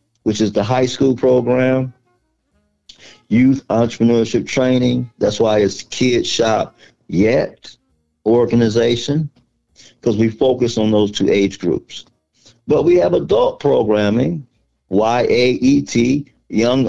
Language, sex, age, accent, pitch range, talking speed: English, male, 50-69, American, 100-120 Hz, 120 wpm